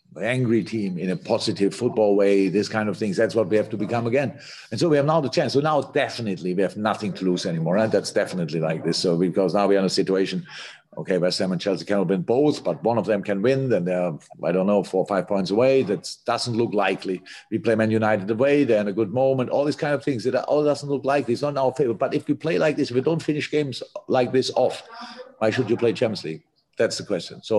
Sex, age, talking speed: male, 50-69, 270 wpm